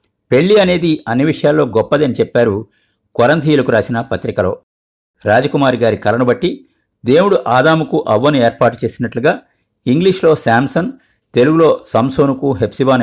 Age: 50-69